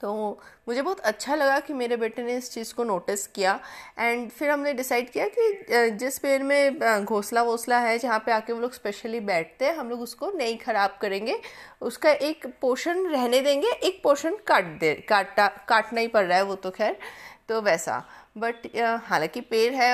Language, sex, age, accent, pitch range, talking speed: Hindi, female, 30-49, native, 215-280 Hz, 195 wpm